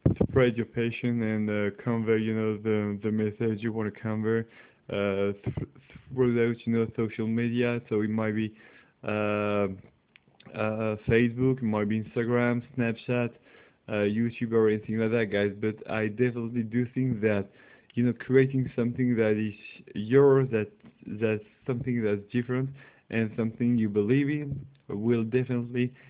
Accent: French